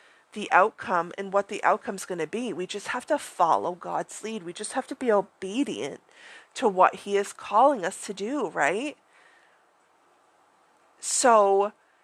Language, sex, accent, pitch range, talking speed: English, female, American, 185-255 Hz, 160 wpm